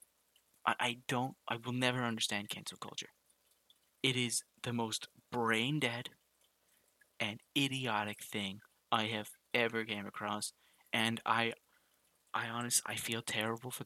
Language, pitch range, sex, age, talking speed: English, 105-125 Hz, male, 30-49, 125 wpm